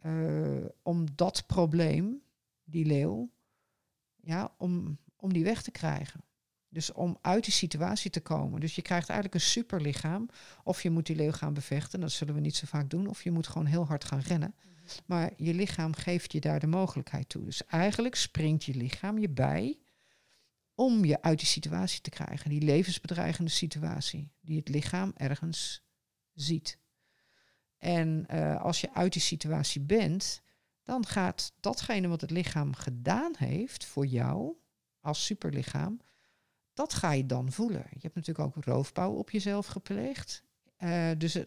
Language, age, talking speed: Dutch, 50-69, 165 wpm